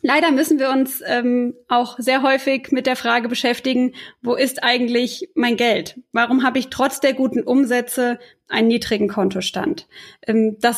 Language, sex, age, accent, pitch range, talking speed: German, female, 20-39, German, 230-280 Hz, 160 wpm